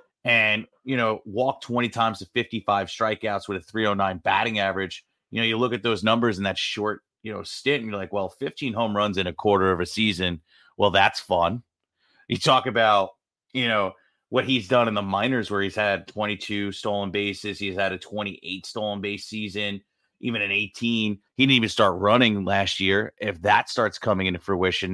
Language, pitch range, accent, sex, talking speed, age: English, 100-115 Hz, American, male, 200 wpm, 30-49